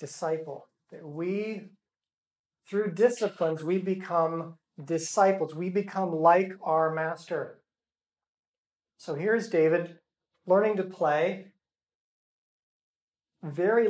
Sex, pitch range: male, 160-190 Hz